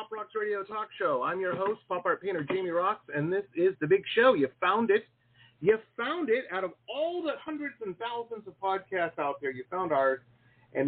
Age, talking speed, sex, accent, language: 40-59, 215 wpm, male, American, English